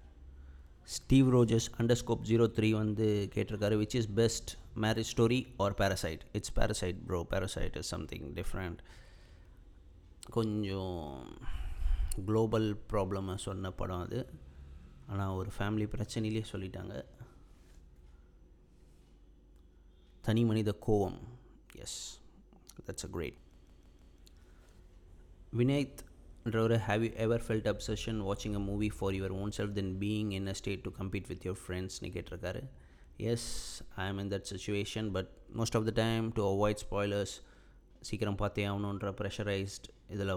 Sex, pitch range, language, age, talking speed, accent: male, 85-110 Hz, Tamil, 30-49, 120 wpm, native